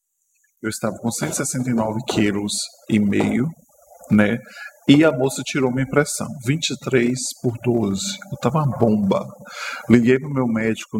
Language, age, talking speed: Portuguese, 20-39, 135 wpm